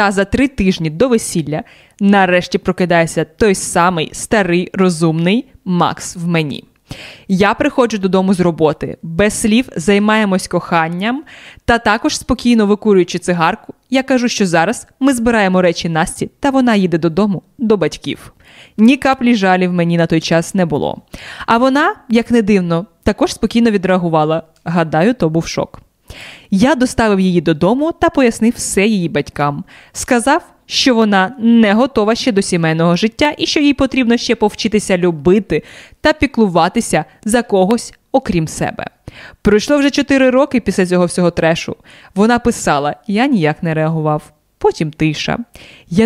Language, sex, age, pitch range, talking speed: Ukrainian, female, 20-39, 175-235 Hz, 145 wpm